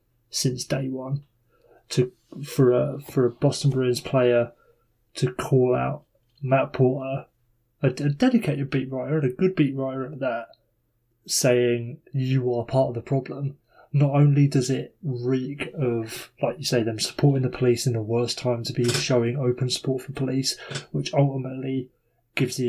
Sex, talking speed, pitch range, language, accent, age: male, 165 wpm, 120-135 Hz, English, British, 20-39